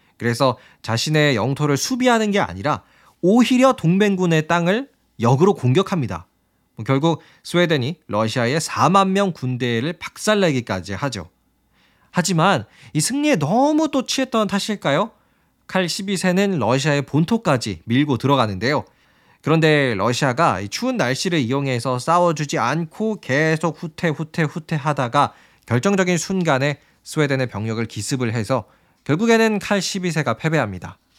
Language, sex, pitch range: Korean, male, 120-185 Hz